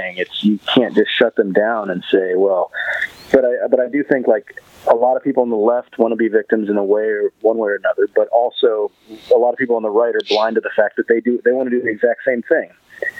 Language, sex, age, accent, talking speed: English, male, 40-59, American, 275 wpm